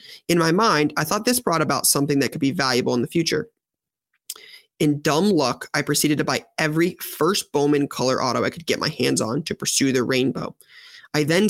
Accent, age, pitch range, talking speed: American, 20-39, 135-165 Hz, 210 wpm